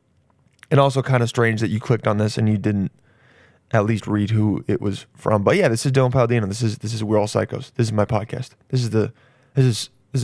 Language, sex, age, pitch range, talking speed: English, male, 20-39, 110-140 Hz, 250 wpm